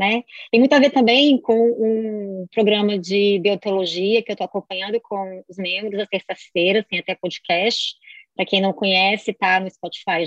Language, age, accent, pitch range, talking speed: Portuguese, 20-39, Brazilian, 190-235 Hz, 175 wpm